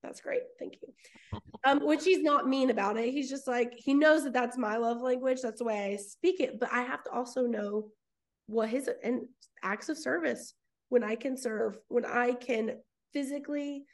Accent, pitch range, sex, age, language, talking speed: American, 230-275 Hz, female, 20-39, English, 200 wpm